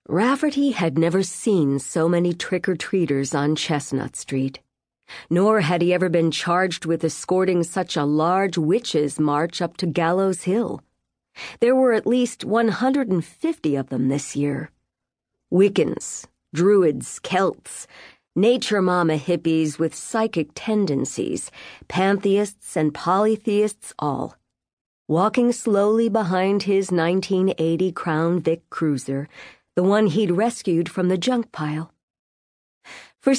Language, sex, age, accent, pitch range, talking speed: English, female, 40-59, American, 160-215 Hz, 120 wpm